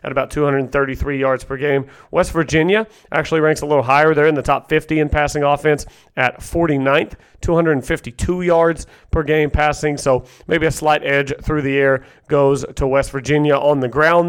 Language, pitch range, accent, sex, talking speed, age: English, 140-165 Hz, American, male, 180 wpm, 40-59